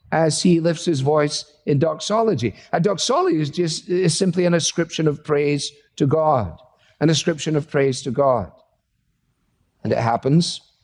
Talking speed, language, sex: 150 wpm, English, male